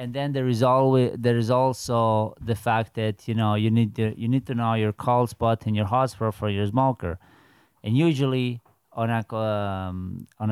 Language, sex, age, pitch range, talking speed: English, male, 30-49, 105-125 Hz, 200 wpm